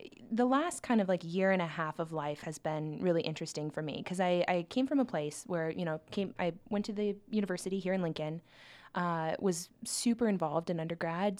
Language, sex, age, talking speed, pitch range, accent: English, female, 20-39, 220 wpm, 170-200 Hz, American